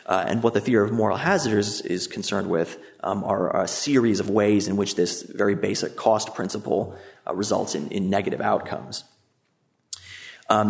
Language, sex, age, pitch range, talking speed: English, male, 30-49, 100-115 Hz, 175 wpm